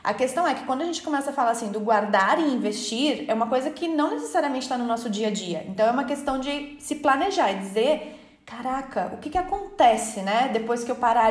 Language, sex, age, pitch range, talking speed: Portuguese, female, 20-39, 220-285 Hz, 245 wpm